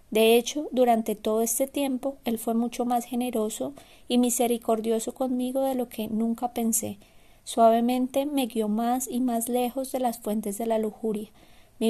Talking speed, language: 165 wpm, English